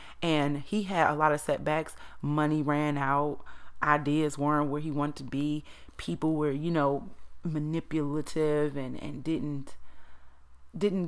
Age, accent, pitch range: 30-49, American, 145-175 Hz